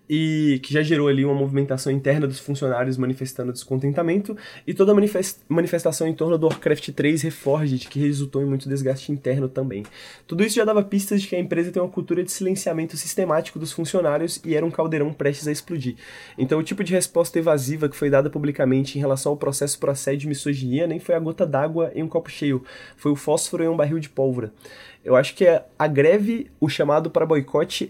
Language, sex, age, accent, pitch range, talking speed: Portuguese, male, 20-39, Brazilian, 140-175 Hz, 205 wpm